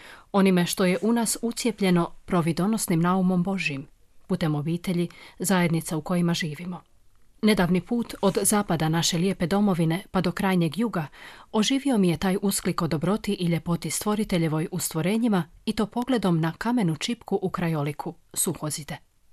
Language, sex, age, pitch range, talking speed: Croatian, female, 30-49, 165-200 Hz, 145 wpm